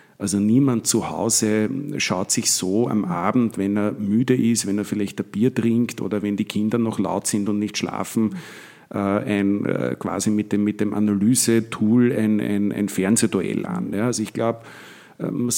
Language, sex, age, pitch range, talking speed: German, male, 50-69, 105-125 Hz, 175 wpm